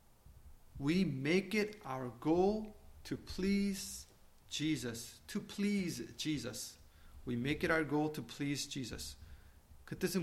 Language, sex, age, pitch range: Korean, male, 30-49, 140-220 Hz